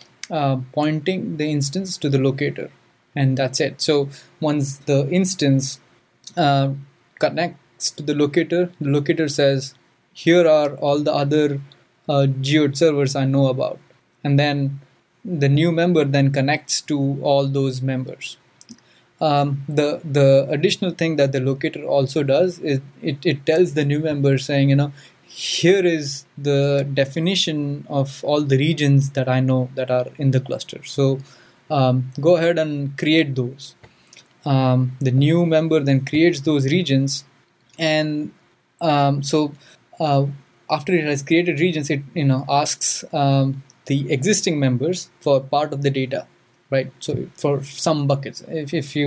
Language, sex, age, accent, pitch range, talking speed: English, male, 20-39, Indian, 135-155 Hz, 155 wpm